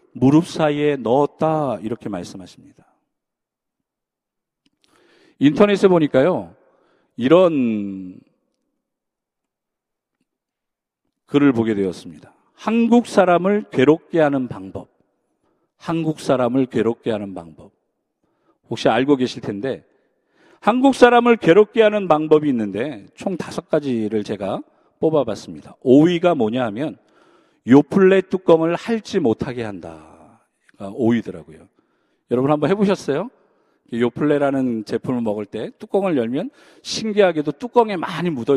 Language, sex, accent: Korean, male, native